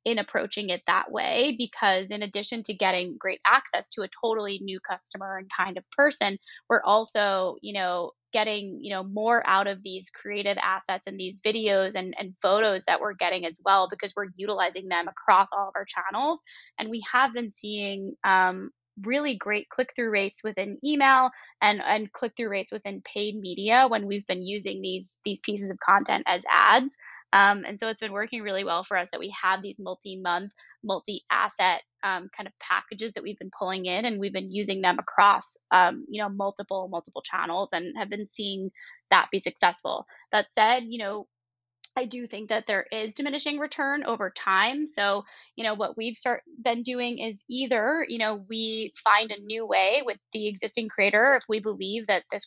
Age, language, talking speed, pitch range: 10-29, English, 190 wpm, 190-225 Hz